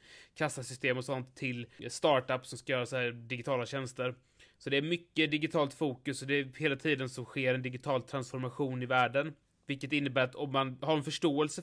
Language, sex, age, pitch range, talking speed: Swedish, male, 20-39, 125-145 Hz, 195 wpm